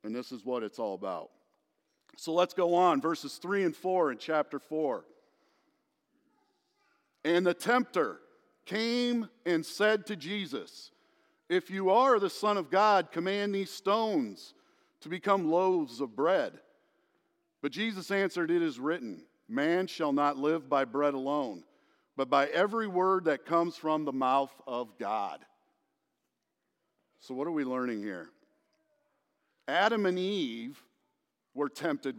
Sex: male